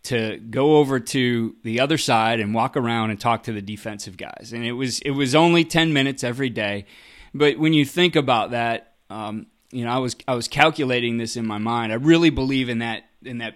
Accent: American